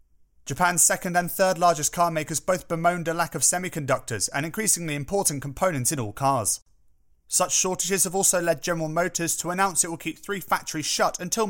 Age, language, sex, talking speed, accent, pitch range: 30-49, English, male, 190 wpm, British, 110-180 Hz